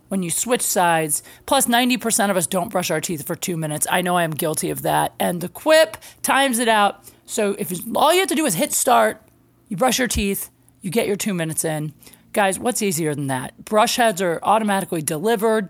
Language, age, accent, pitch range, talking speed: English, 30-49, American, 190-260 Hz, 220 wpm